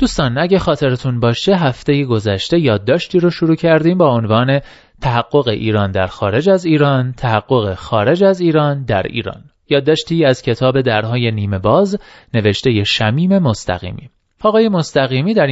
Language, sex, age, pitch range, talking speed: Persian, male, 30-49, 110-170 Hz, 140 wpm